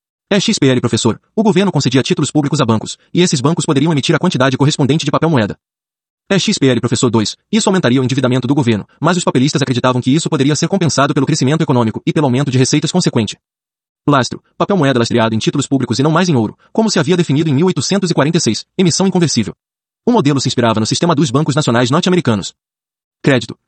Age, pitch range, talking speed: 30-49, 125-170 Hz, 200 wpm